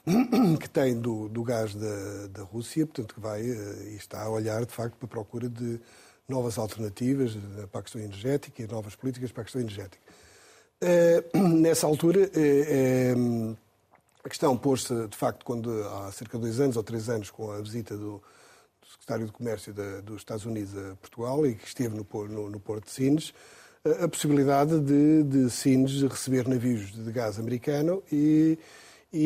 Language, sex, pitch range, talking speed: Portuguese, male, 110-140 Hz, 180 wpm